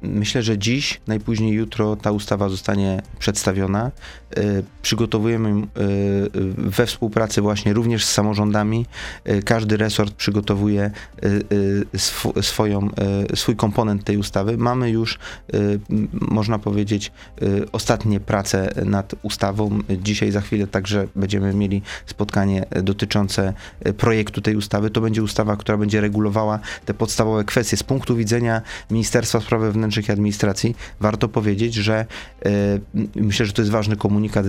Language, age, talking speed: Polish, 30-49, 115 wpm